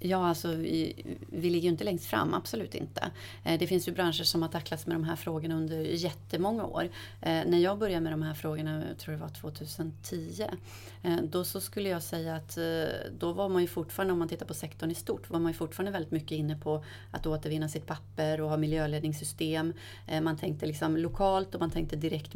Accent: native